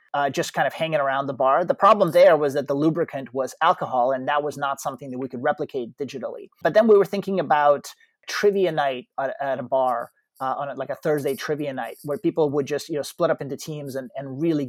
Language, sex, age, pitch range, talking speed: English, male, 30-49, 135-160 Hz, 245 wpm